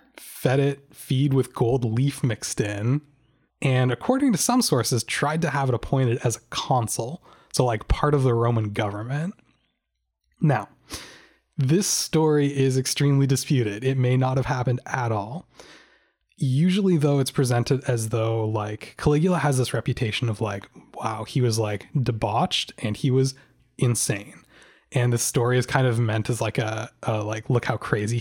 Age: 20-39